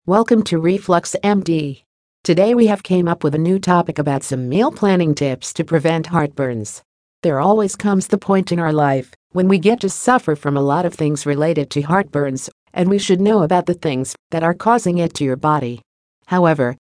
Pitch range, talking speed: 145-185 Hz, 205 wpm